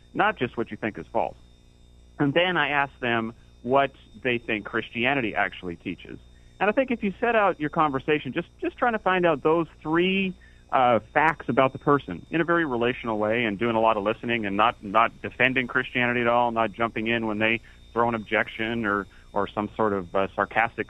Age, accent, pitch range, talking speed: 40-59, American, 105-140 Hz, 205 wpm